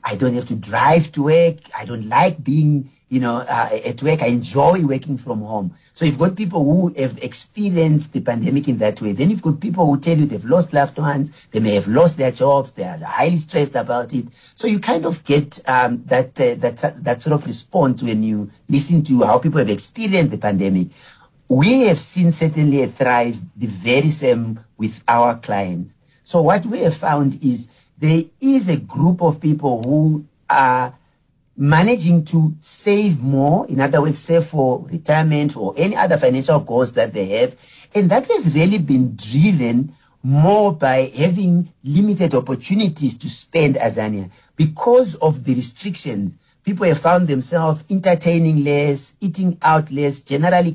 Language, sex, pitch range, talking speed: English, male, 130-170 Hz, 180 wpm